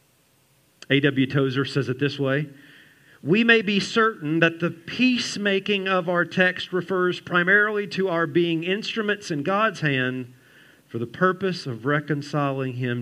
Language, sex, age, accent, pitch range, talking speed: English, male, 50-69, American, 120-160 Hz, 145 wpm